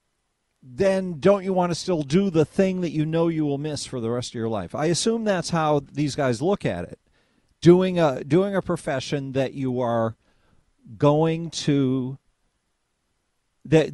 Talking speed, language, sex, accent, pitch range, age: 175 wpm, English, male, American, 120-175 Hz, 50-69